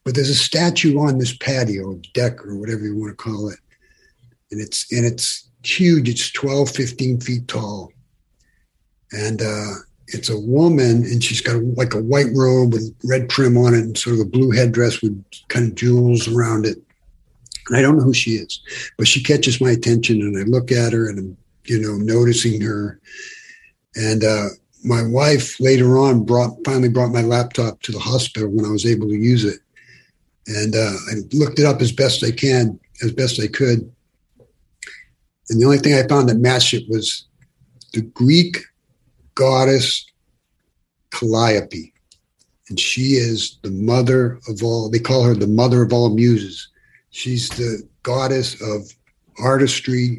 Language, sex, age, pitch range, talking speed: English, male, 60-79, 110-130 Hz, 175 wpm